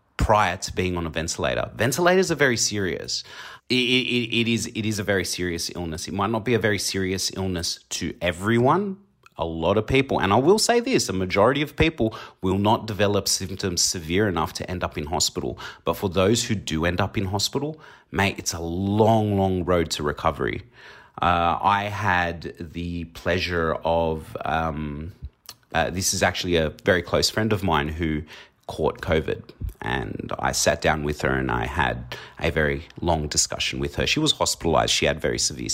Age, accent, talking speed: 30-49, Australian, 185 wpm